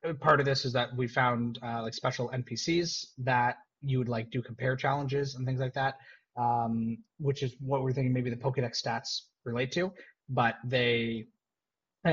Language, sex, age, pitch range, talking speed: English, male, 20-39, 115-145 Hz, 185 wpm